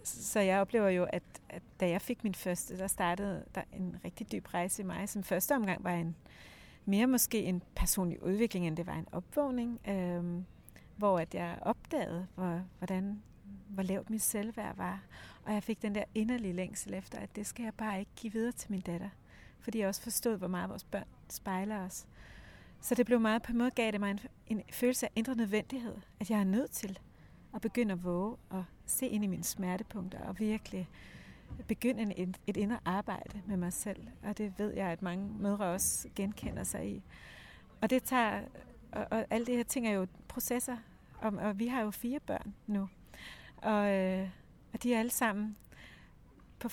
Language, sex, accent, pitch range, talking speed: Danish, female, native, 185-220 Hz, 200 wpm